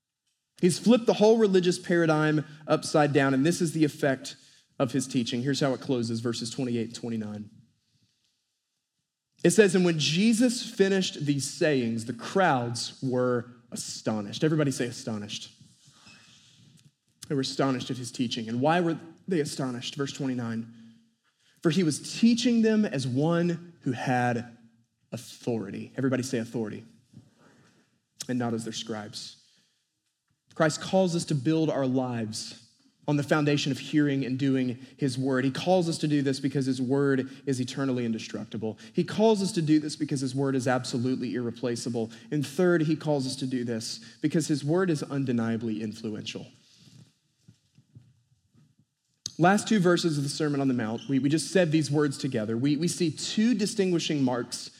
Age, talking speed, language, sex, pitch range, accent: 30-49, 160 wpm, English, male, 120-160 Hz, American